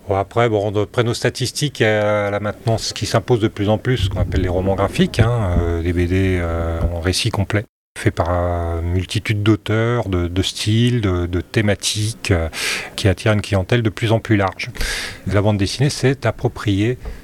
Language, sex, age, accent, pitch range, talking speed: French, male, 30-49, French, 95-115 Hz, 195 wpm